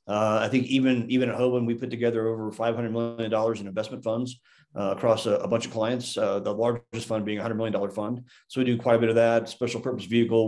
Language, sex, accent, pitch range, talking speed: English, male, American, 110-120 Hz, 245 wpm